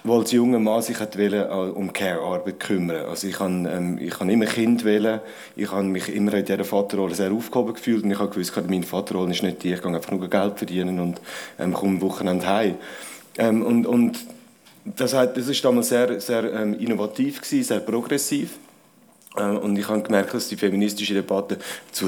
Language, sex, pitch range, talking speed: German, male, 100-120 Hz, 200 wpm